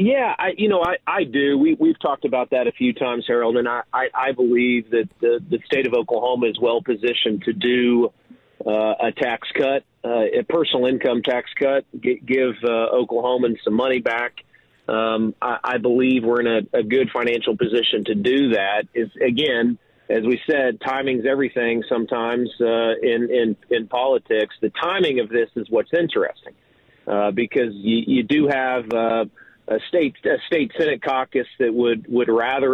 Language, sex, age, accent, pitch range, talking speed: English, male, 40-59, American, 115-130 Hz, 185 wpm